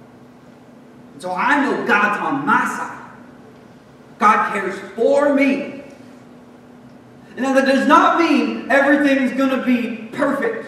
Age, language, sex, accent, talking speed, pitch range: 40-59, English, male, American, 120 wpm, 250-310 Hz